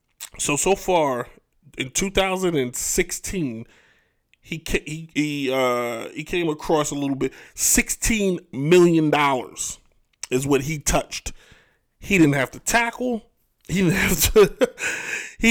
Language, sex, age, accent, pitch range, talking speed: English, male, 20-39, American, 125-165 Hz, 130 wpm